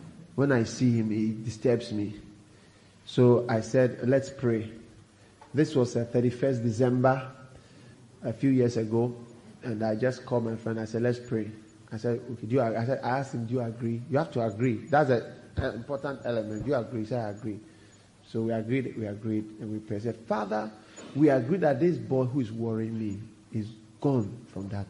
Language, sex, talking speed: English, male, 200 wpm